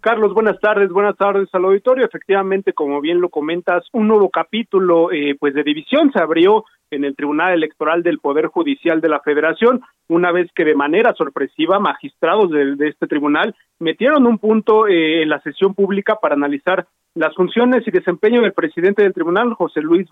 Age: 40-59